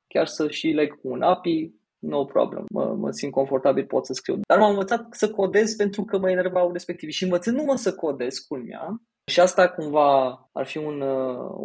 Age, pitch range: 20-39, 140-185 Hz